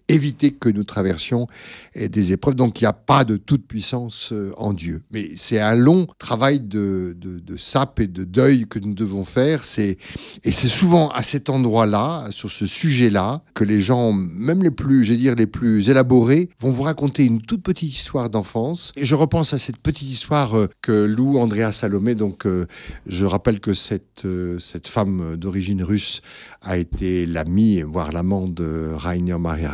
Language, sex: French, male